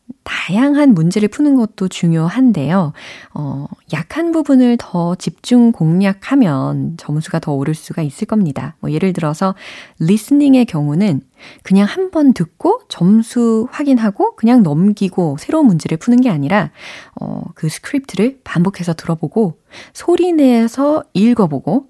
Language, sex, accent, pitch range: Korean, female, native, 155-230 Hz